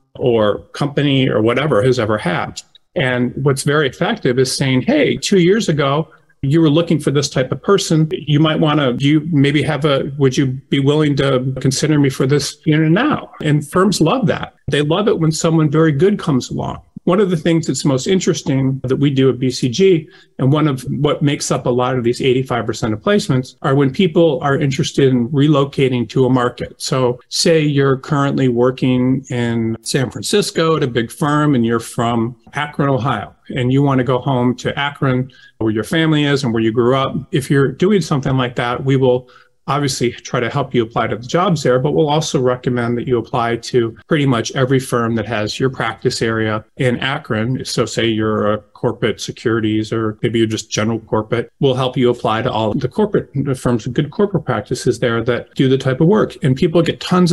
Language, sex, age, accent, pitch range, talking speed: English, male, 40-59, American, 125-155 Hz, 210 wpm